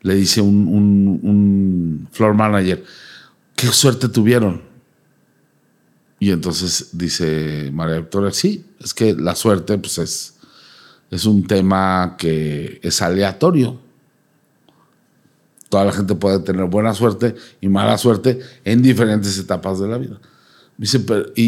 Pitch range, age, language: 100-130 Hz, 50-69, Spanish